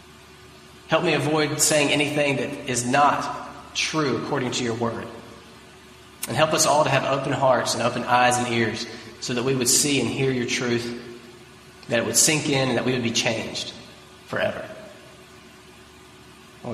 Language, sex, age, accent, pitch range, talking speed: English, male, 30-49, American, 125-185 Hz, 170 wpm